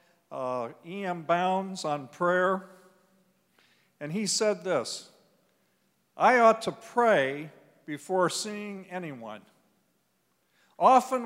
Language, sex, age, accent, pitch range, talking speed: English, male, 50-69, American, 165-210 Hz, 90 wpm